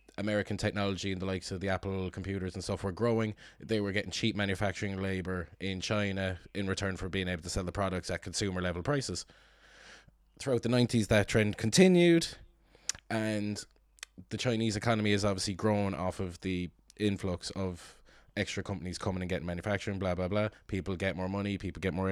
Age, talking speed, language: 20-39, 180 wpm, English